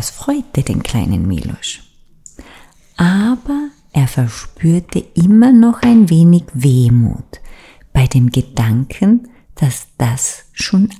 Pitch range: 130-195 Hz